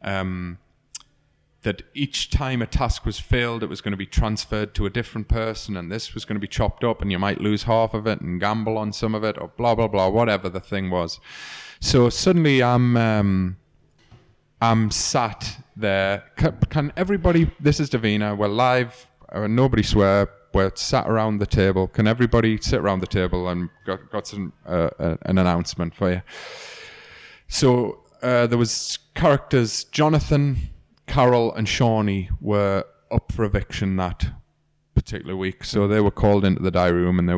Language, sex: English, male